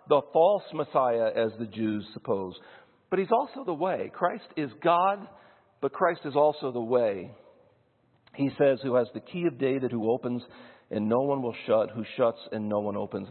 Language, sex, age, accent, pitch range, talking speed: English, male, 50-69, American, 120-155 Hz, 190 wpm